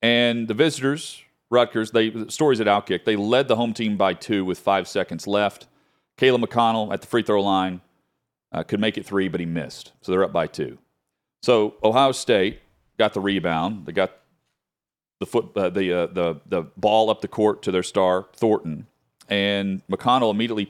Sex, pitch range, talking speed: male, 95-120 Hz, 190 wpm